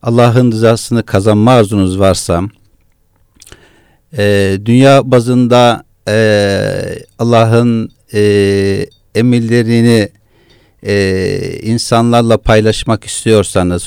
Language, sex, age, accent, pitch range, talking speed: Turkish, male, 50-69, native, 105-130 Hz, 70 wpm